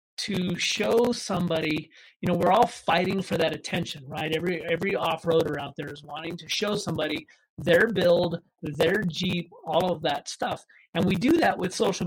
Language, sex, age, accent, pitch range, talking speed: English, male, 40-59, American, 165-200 Hz, 180 wpm